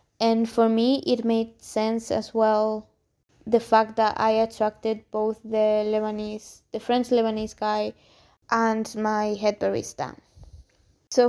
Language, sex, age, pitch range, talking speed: English, female, 20-39, 210-230 Hz, 135 wpm